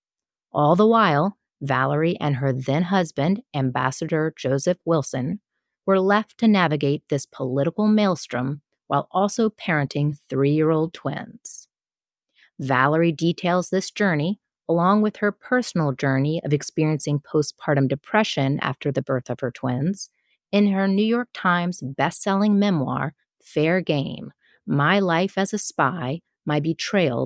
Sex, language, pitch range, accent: female, English, 145-200 Hz, American